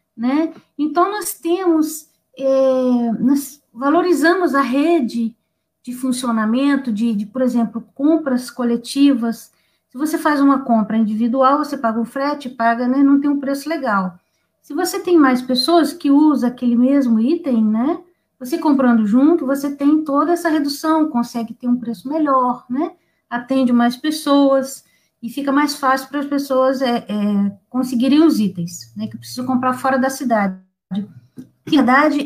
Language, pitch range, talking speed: Portuguese, 235-300 Hz, 155 wpm